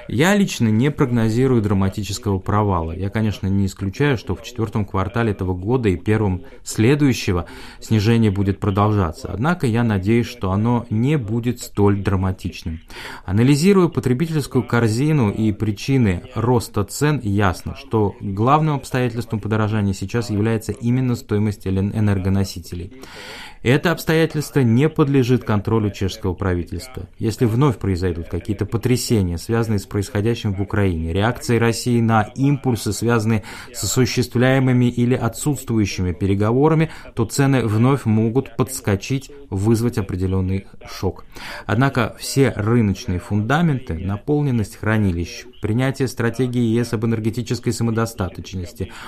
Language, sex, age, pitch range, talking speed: Russian, male, 30-49, 100-125 Hz, 115 wpm